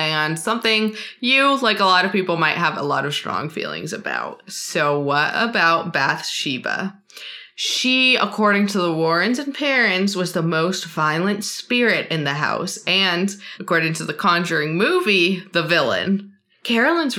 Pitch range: 170-225 Hz